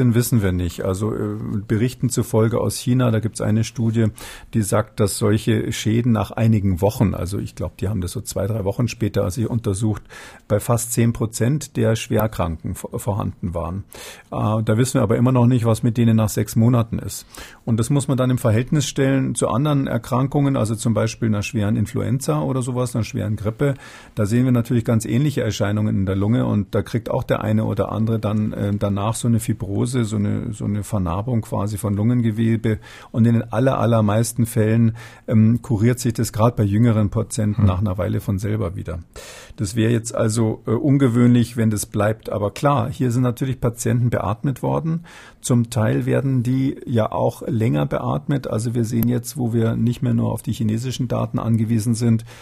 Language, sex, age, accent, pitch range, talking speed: German, male, 50-69, German, 105-120 Hz, 195 wpm